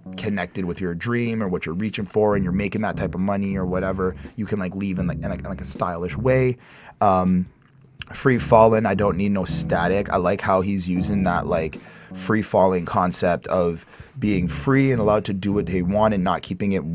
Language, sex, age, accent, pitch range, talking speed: English, male, 20-39, American, 90-105 Hz, 225 wpm